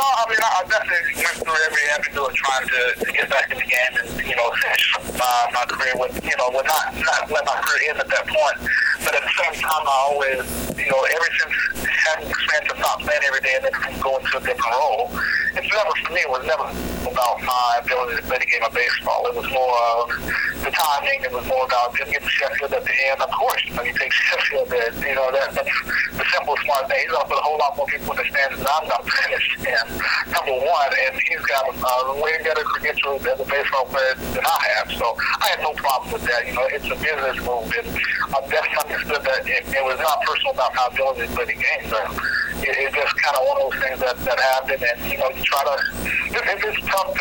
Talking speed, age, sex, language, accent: 240 wpm, 50-69, male, English, American